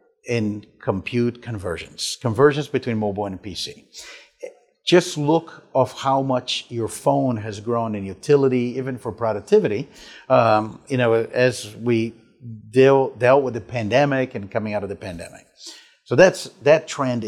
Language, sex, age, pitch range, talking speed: English, male, 50-69, 110-155 Hz, 140 wpm